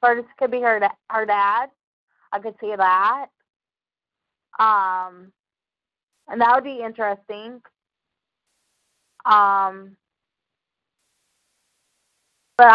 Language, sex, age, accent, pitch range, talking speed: English, female, 30-49, American, 195-225 Hz, 90 wpm